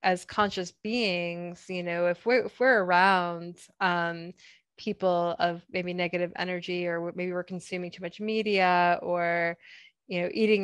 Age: 20-39